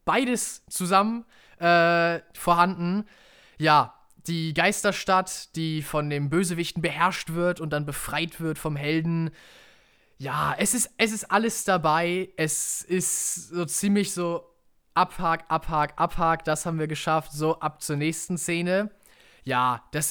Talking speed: 135 wpm